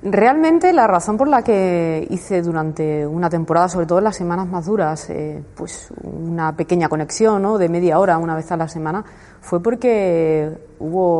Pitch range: 160-185 Hz